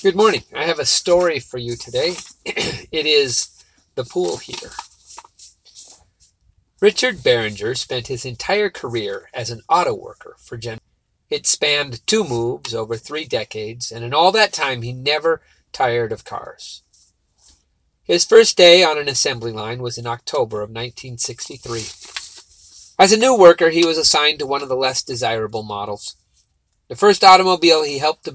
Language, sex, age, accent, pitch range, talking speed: English, male, 40-59, American, 110-185 Hz, 160 wpm